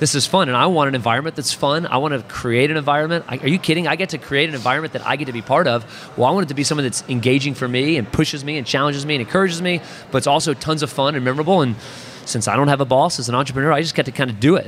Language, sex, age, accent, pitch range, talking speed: English, male, 30-49, American, 120-150 Hz, 325 wpm